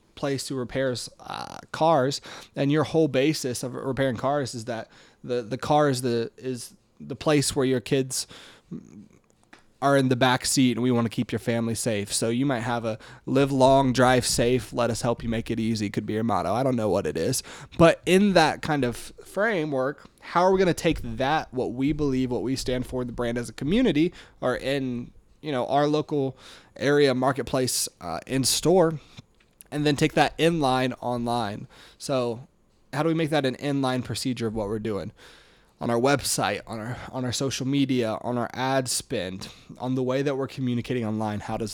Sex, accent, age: male, American, 20-39